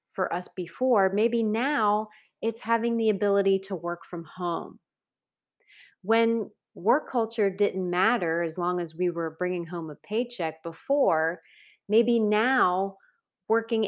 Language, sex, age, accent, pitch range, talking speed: English, female, 30-49, American, 175-230 Hz, 135 wpm